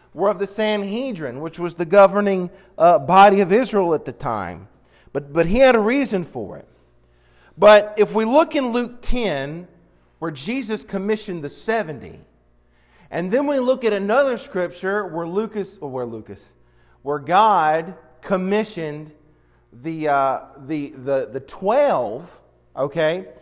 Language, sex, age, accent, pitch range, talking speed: English, male, 40-59, American, 155-220 Hz, 145 wpm